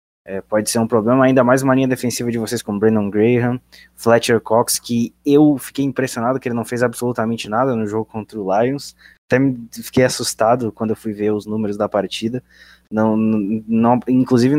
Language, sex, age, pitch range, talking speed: Portuguese, male, 20-39, 105-120 Hz, 175 wpm